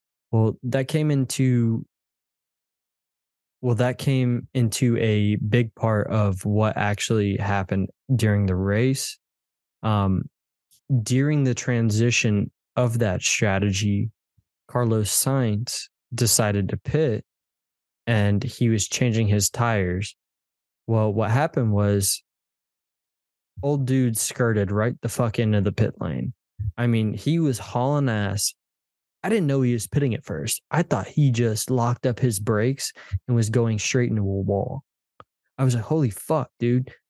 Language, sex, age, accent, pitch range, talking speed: English, male, 20-39, American, 105-130 Hz, 135 wpm